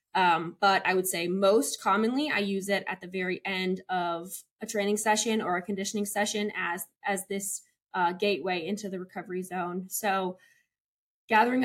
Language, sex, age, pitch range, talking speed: English, female, 20-39, 190-220 Hz, 170 wpm